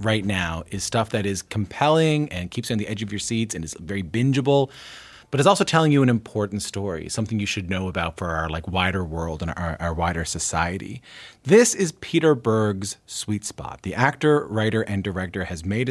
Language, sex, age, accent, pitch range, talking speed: English, male, 30-49, American, 95-120 Hz, 210 wpm